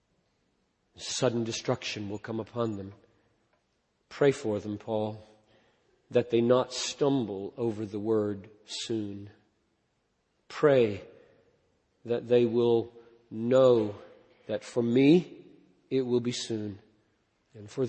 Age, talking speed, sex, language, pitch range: 50-69, 105 wpm, male, English, 110-125 Hz